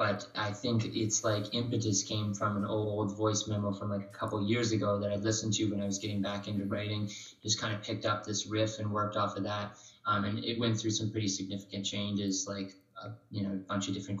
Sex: male